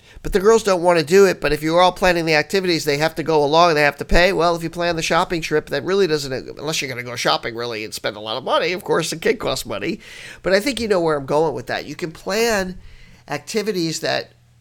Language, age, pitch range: English, 40-59, 125-170 Hz